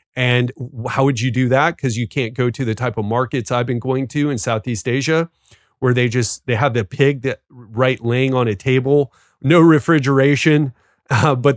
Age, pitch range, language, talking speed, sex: 30-49, 125-150 Hz, English, 200 wpm, male